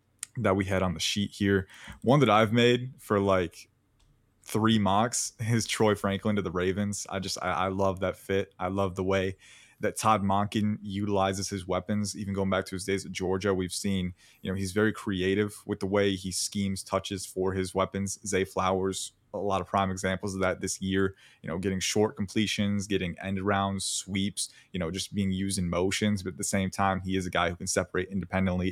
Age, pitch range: 20-39, 95-105 Hz